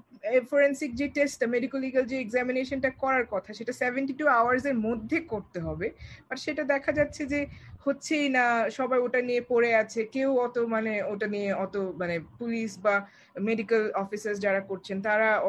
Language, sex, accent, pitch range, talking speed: Bengali, female, native, 215-285 Hz, 95 wpm